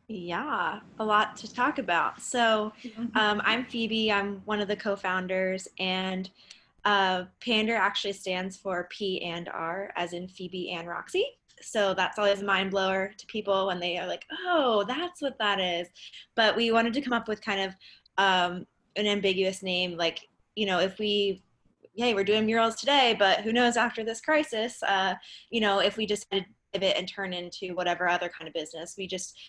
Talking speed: 190 wpm